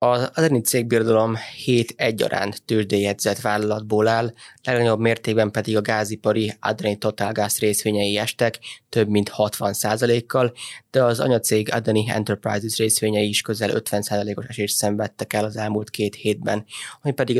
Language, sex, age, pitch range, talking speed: Hungarian, male, 20-39, 105-120 Hz, 135 wpm